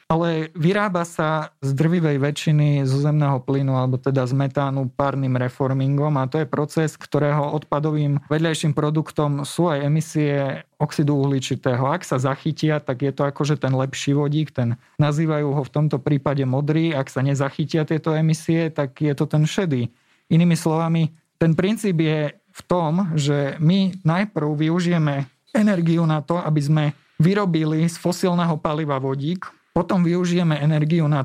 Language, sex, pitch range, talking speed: Slovak, male, 145-165 Hz, 155 wpm